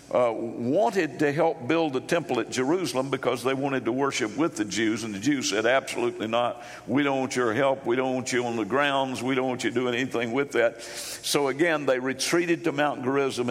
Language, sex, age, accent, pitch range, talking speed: English, male, 50-69, American, 125-150 Hz, 220 wpm